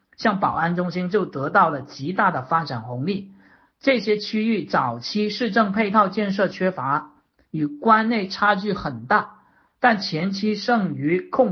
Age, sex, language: 50-69, male, Chinese